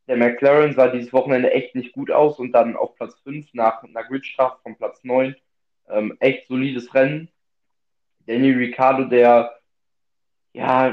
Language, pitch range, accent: German, 120-135 Hz, German